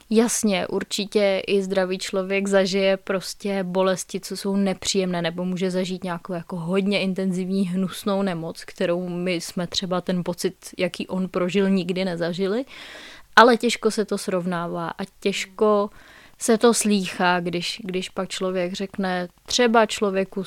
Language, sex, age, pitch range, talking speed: Czech, female, 20-39, 185-215 Hz, 140 wpm